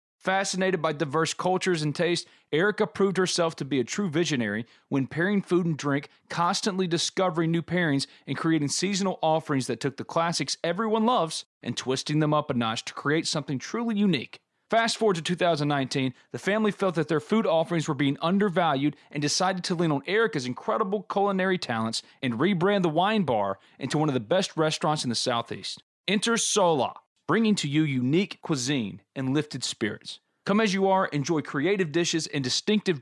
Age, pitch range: 30-49, 140-190 Hz